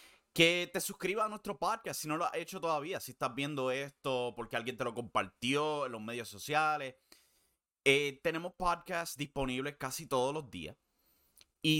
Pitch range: 110-150 Hz